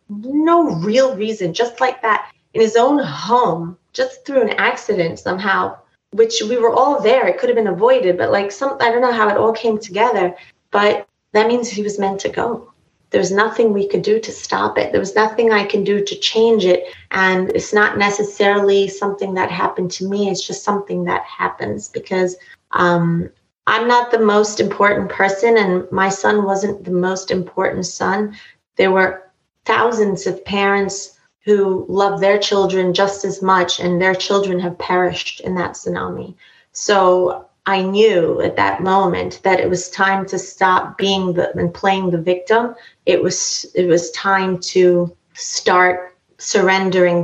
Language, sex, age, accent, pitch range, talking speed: English, female, 30-49, American, 180-215 Hz, 175 wpm